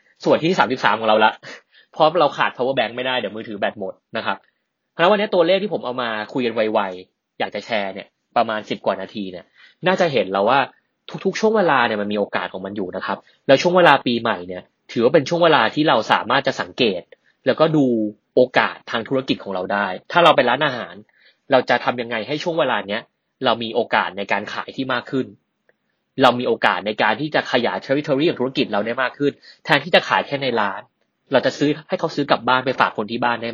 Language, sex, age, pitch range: Thai, male, 20-39, 110-160 Hz